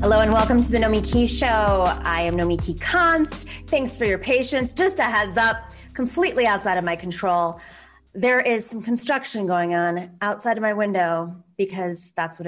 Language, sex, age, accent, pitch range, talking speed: English, female, 20-39, American, 190-285 Hz, 185 wpm